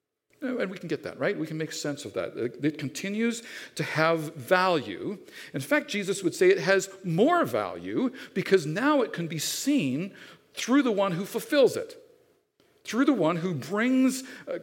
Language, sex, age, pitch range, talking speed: English, male, 50-69, 165-255 Hz, 175 wpm